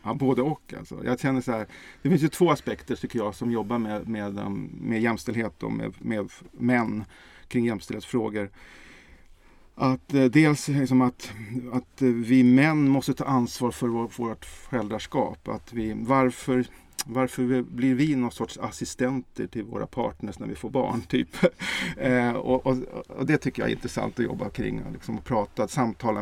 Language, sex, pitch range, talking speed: Swedish, male, 110-135 Hz, 165 wpm